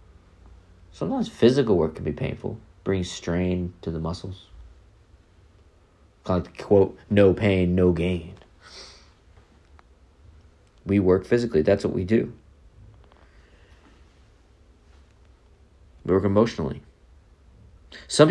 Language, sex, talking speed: English, male, 95 wpm